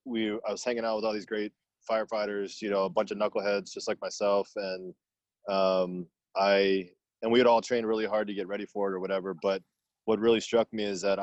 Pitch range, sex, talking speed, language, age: 95-105 Hz, male, 230 wpm, English, 20-39